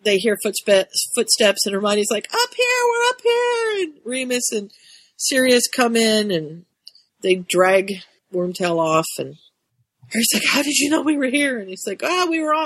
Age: 40-59